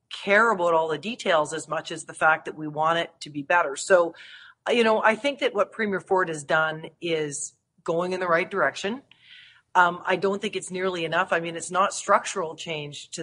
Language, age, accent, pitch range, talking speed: English, 40-59, American, 165-215 Hz, 220 wpm